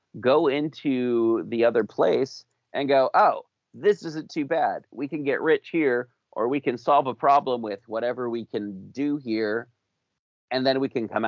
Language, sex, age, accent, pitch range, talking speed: English, male, 30-49, American, 115-145 Hz, 180 wpm